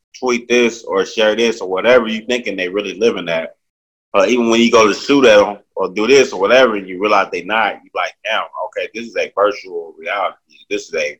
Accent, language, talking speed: American, English, 245 wpm